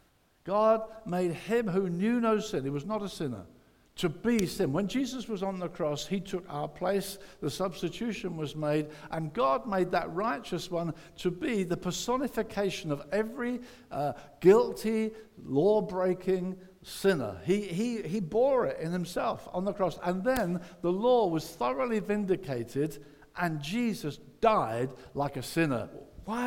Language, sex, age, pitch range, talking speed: English, male, 60-79, 145-220 Hz, 155 wpm